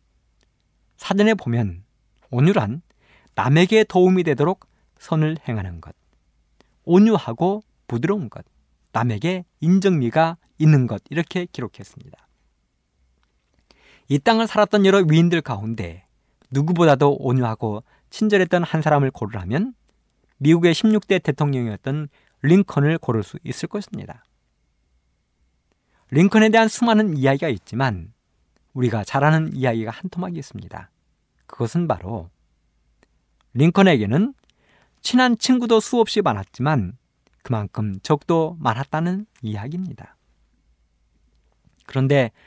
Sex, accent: male, native